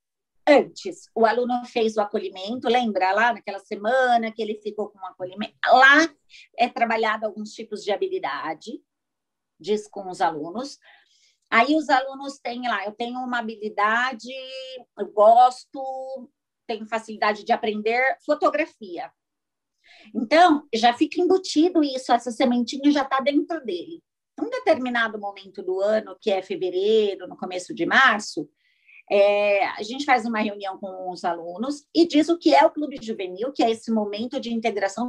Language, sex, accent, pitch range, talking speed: Portuguese, female, Brazilian, 215-315 Hz, 155 wpm